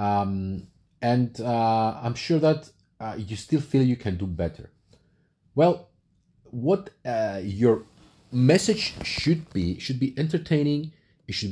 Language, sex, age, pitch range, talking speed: English, male, 40-59, 100-150 Hz, 135 wpm